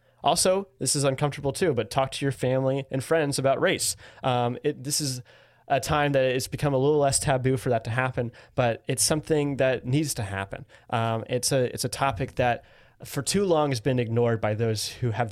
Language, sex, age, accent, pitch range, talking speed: English, male, 20-39, American, 115-145 Hz, 215 wpm